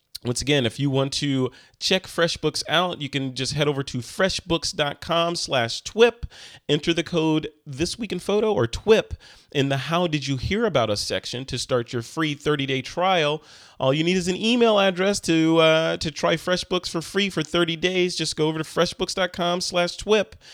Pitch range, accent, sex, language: 130-165 Hz, American, male, English